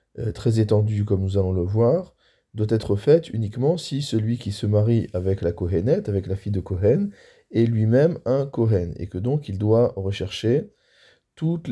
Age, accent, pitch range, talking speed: 20-39, French, 100-120 Hz, 180 wpm